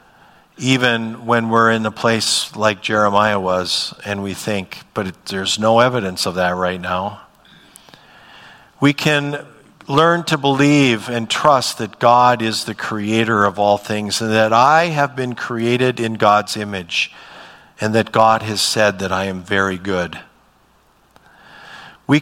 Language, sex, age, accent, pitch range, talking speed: English, male, 50-69, American, 105-125 Hz, 150 wpm